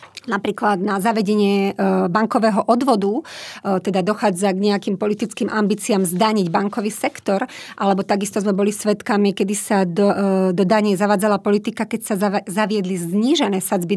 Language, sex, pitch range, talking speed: Slovak, female, 200-225 Hz, 135 wpm